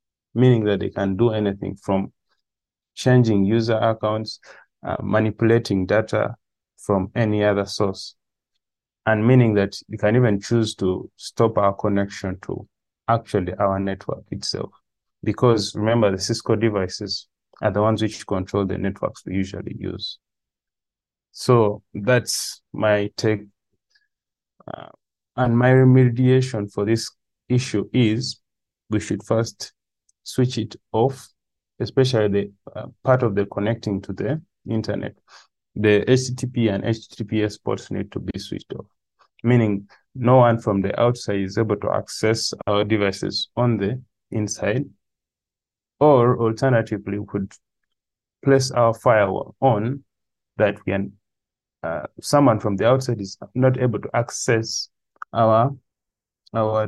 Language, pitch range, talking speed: English, 100-120 Hz, 130 wpm